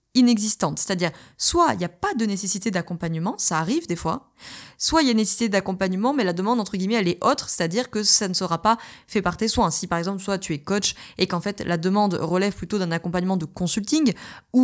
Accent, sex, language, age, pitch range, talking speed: French, female, French, 20-39, 175-215 Hz, 235 wpm